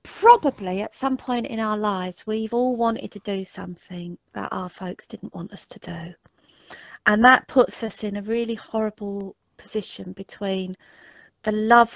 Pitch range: 195-240 Hz